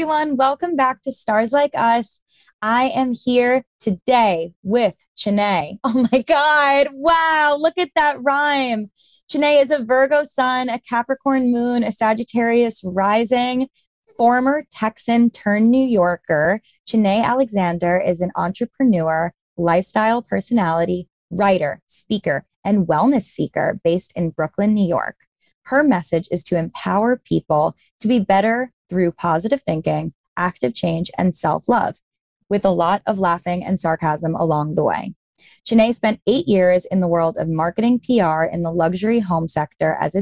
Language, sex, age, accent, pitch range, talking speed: English, female, 20-39, American, 175-245 Hz, 140 wpm